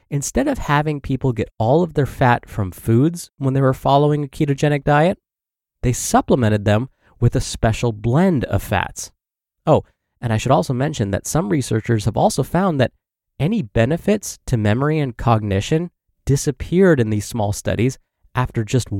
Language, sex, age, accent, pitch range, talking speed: English, male, 20-39, American, 110-150 Hz, 165 wpm